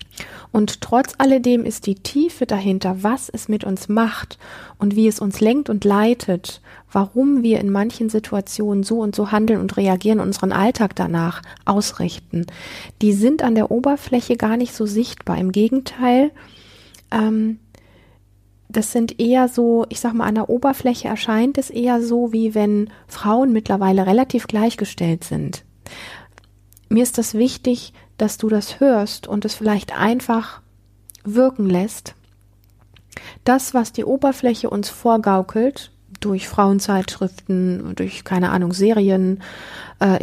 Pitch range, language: 185-230 Hz, German